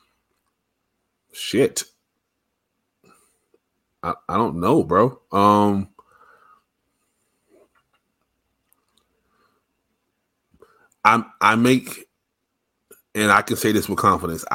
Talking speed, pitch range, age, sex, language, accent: 70 wpm, 90-105 Hz, 30-49, male, English, American